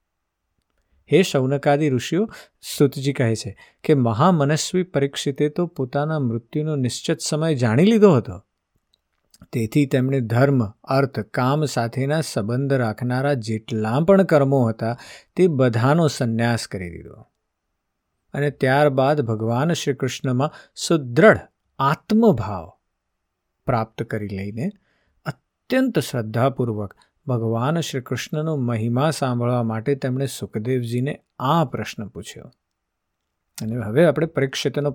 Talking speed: 55 wpm